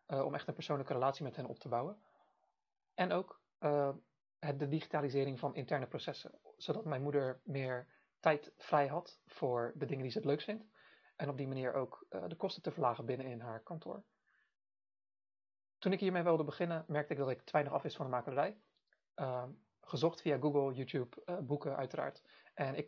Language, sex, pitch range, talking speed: Dutch, male, 130-155 Hz, 190 wpm